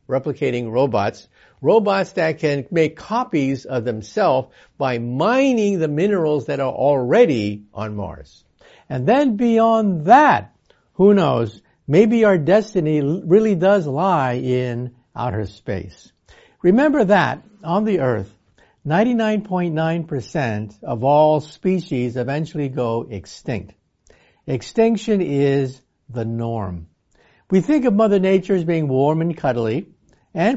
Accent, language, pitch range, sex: American, English, 125-200 Hz, male